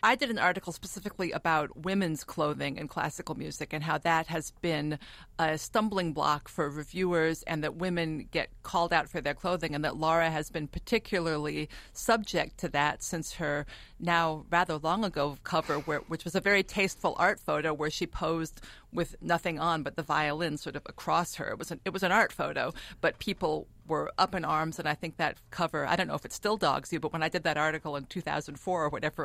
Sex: female